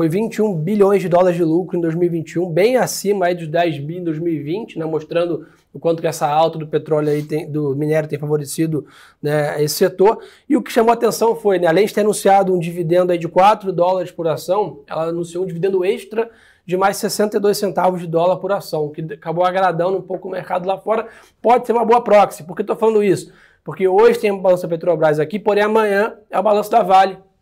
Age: 20-39